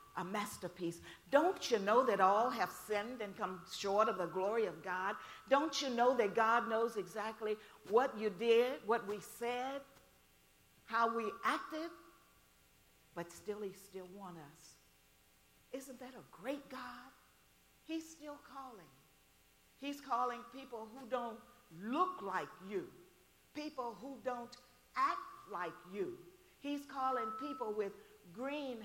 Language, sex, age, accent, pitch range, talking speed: English, female, 50-69, American, 170-255 Hz, 135 wpm